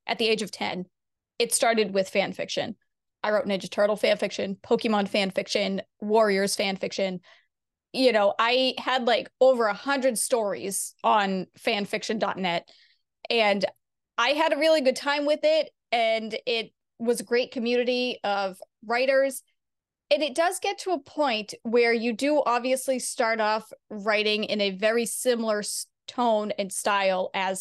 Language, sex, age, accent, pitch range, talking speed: English, female, 30-49, American, 210-260 Hz, 160 wpm